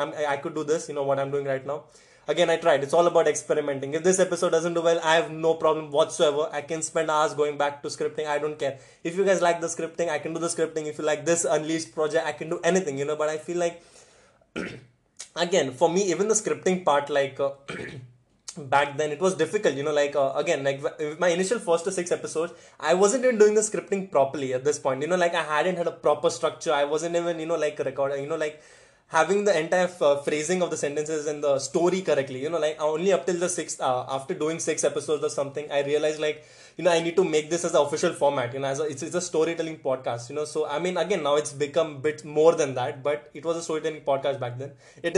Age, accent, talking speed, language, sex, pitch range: 20-39, Indian, 260 wpm, English, male, 145-170 Hz